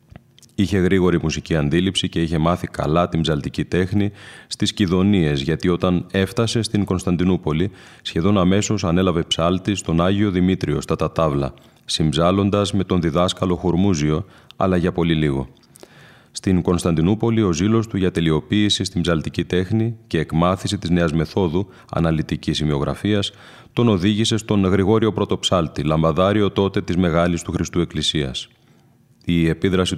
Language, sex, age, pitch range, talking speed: Greek, male, 30-49, 80-105 Hz, 135 wpm